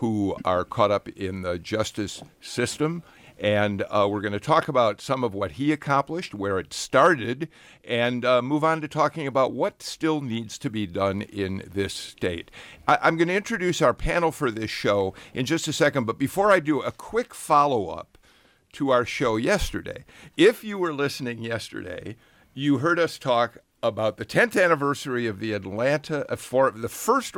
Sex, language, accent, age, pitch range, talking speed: male, English, American, 50-69, 110-145 Hz, 175 wpm